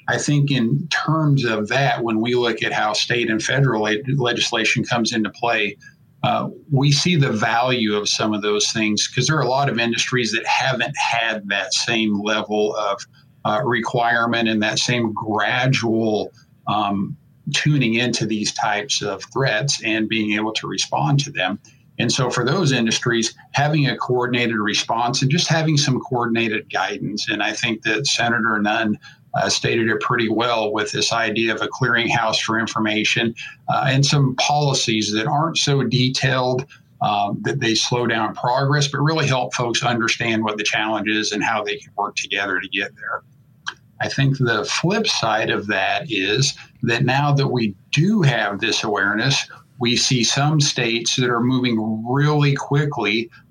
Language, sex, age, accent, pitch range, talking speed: English, male, 50-69, American, 110-135 Hz, 170 wpm